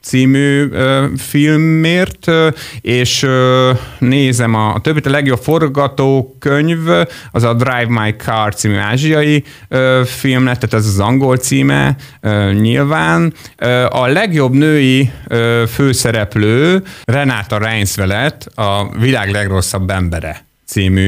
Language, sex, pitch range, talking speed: Hungarian, male, 105-135 Hz, 120 wpm